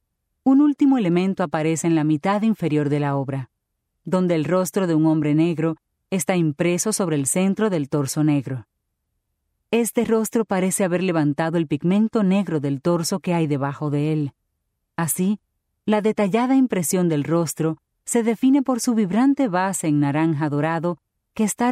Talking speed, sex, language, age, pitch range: 160 wpm, female, English, 30-49, 150-205 Hz